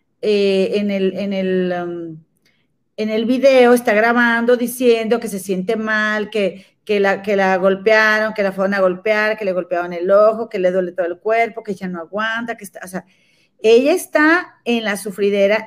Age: 40-59